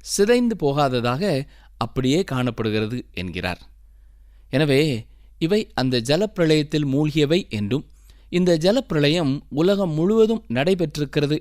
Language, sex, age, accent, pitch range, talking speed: Tamil, male, 20-39, native, 125-185 Hz, 85 wpm